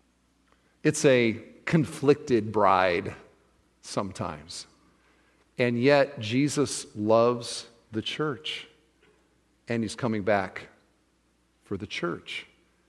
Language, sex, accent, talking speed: English, male, American, 85 wpm